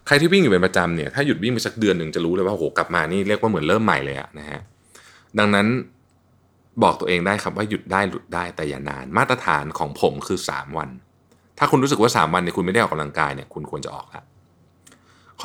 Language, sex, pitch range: Thai, male, 85-110 Hz